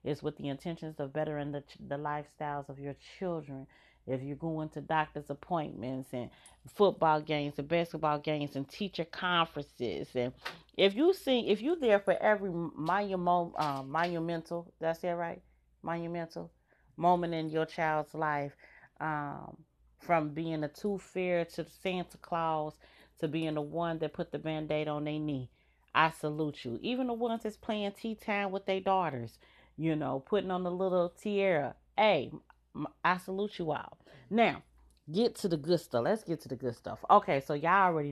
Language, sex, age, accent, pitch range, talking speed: English, female, 30-49, American, 145-180 Hz, 175 wpm